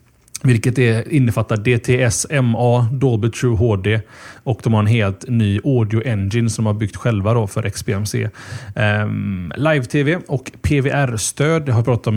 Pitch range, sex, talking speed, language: 110-140 Hz, male, 155 wpm, Swedish